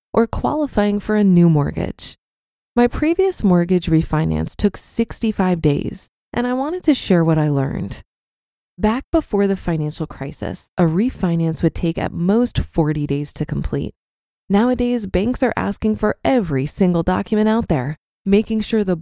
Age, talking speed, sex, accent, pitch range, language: 20-39, 155 wpm, female, American, 165-235 Hz, English